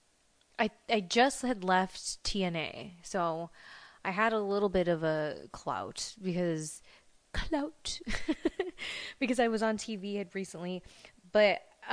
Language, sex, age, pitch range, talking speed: English, female, 20-39, 180-225 Hz, 125 wpm